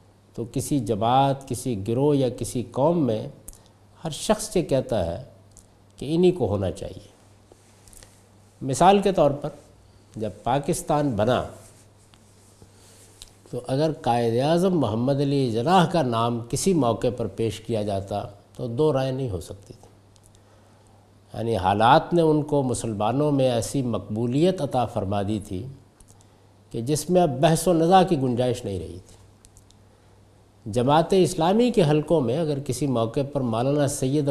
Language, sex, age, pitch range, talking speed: Urdu, male, 60-79, 105-150 Hz, 145 wpm